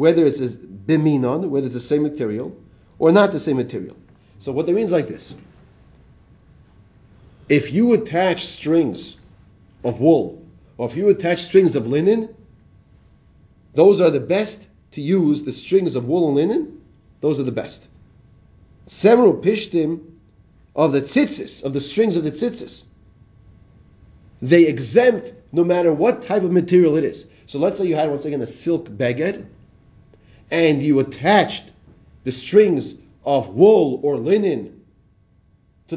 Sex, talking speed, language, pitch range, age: male, 150 wpm, English, 110-170 Hz, 40-59